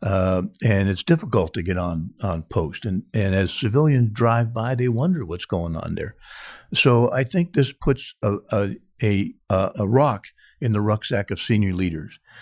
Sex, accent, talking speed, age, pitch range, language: male, American, 180 wpm, 50-69, 95-125 Hz, English